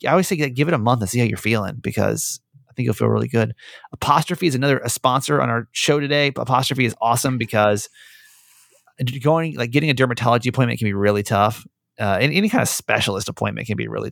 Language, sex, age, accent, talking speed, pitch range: English, male, 30-49, American, 230 wpm, 115-145 Hz